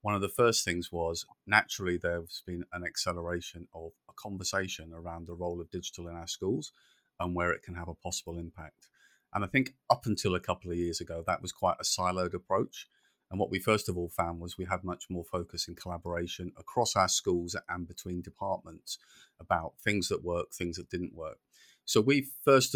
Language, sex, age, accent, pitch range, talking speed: English, male, 40-59, British, 85-100 Hz, 205 wpm